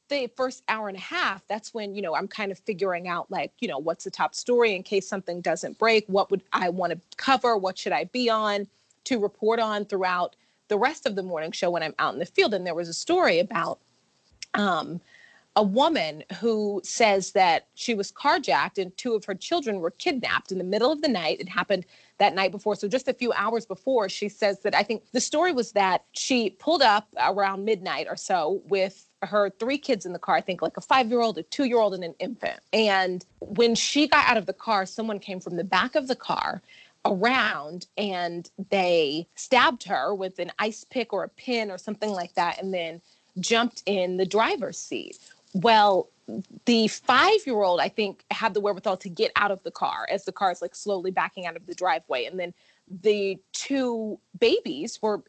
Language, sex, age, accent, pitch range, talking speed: English, female, 30-49, American, 190-235 Hz, 215 wpm